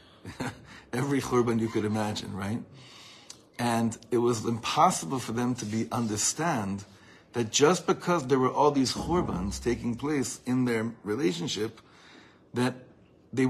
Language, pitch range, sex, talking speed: English, 115-145 Hz, male, 135 wpm